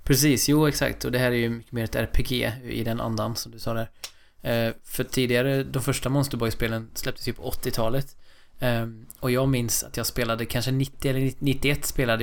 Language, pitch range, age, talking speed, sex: Swedish, 110-130 Hz, 20-39, 200 wpm, male